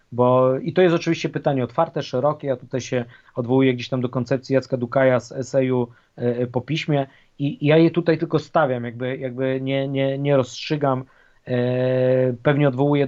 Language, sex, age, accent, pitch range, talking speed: Polish, male, 20-39, native, 130-150 Hz, 170 wpm